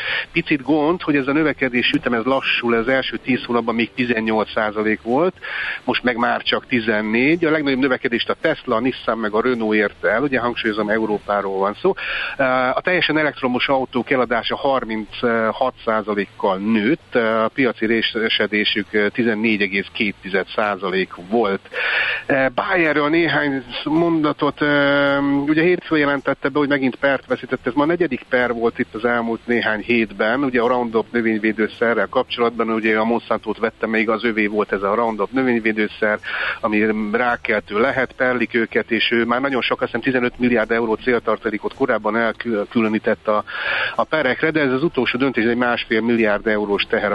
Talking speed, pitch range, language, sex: 155 wpm, 110-135 Hz, Hungarian, male